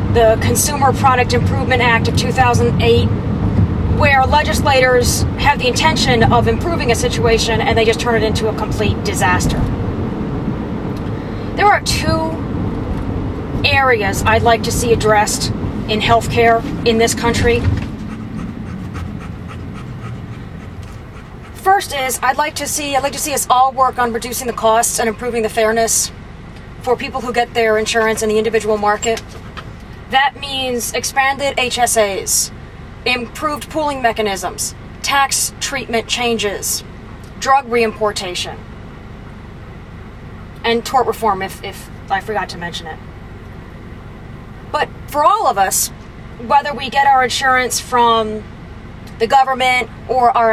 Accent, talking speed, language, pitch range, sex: American, 125 wpm, English, 215-260 Hz, female